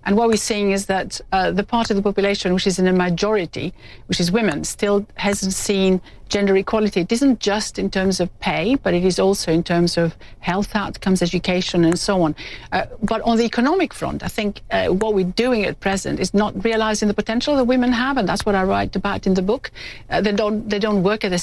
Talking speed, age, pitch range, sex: 235 wpm, 60-79, 190-230 Hz, female